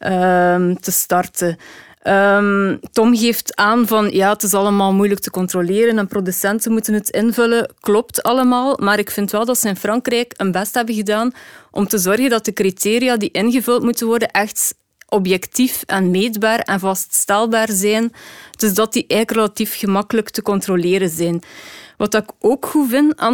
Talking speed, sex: 165 wpm, female